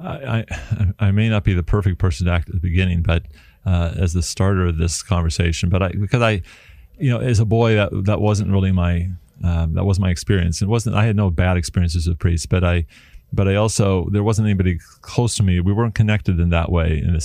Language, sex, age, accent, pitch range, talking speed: English, male, 30-49, American, 85-105 Hz, 235 wpm